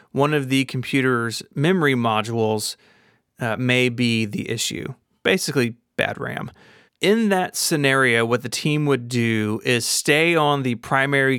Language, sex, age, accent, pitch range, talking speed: English, male, 30-49, American, 120-145 Hz, 140 wpm